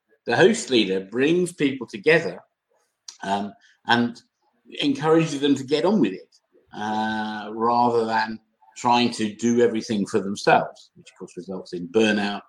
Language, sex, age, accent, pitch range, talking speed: English, male, 50-69, British, 110-140 Hz, 145 wpm